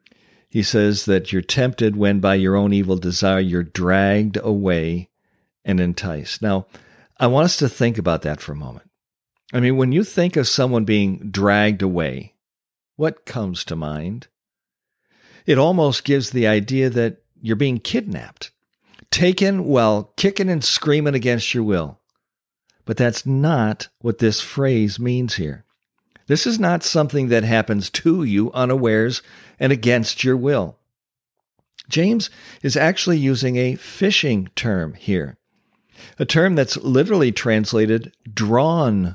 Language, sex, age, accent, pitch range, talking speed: English, male, 50-69, American, 100-135 Hz, 145 wpm